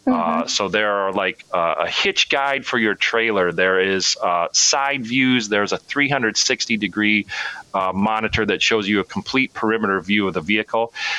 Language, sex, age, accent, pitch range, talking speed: English, male, 40-59, American, 100-120 Hz, 175 wpm